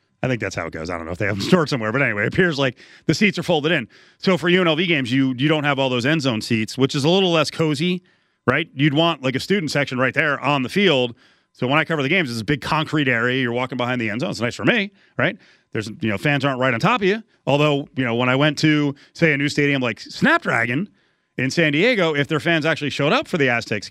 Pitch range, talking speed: 125-160 Hz, 285 wpm